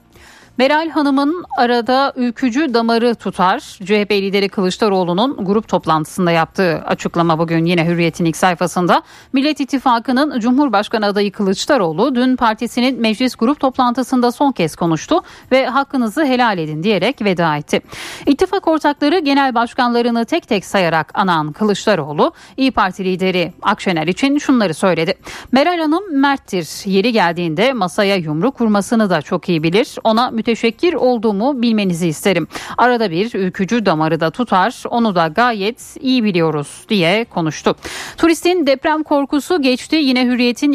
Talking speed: 135 wpm